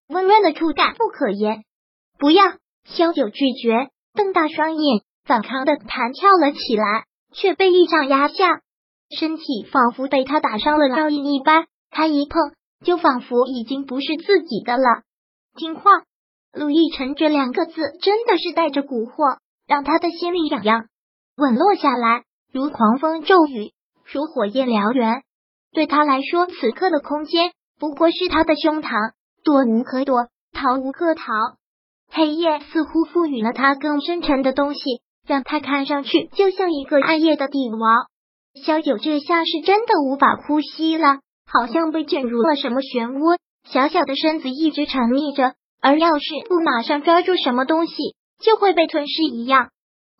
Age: 20-39